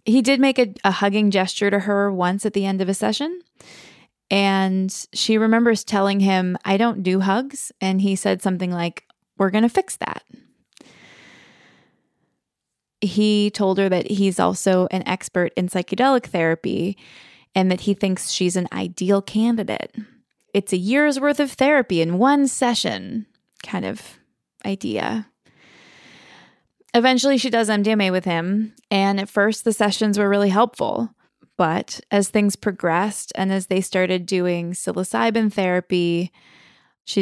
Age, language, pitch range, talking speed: 20-39, English, 185-230 Hz, 150 wpm